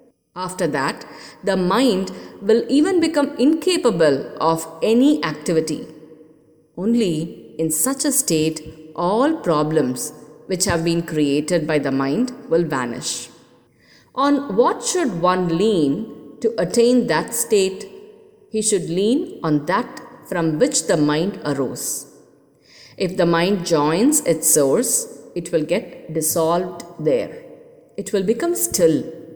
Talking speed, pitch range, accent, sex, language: 125 wpm, 160-255 Hz, Indian, female, English